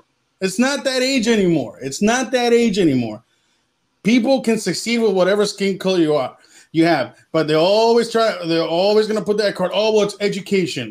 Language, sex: English, male